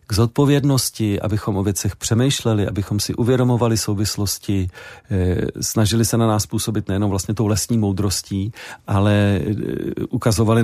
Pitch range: 105-125 Hz